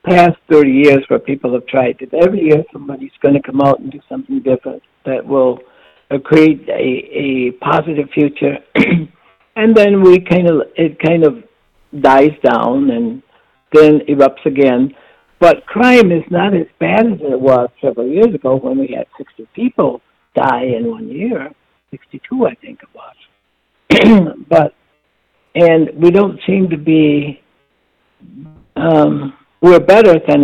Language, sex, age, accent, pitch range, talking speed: English, male, 60-79, American, 140-185 Hz, 150 wpm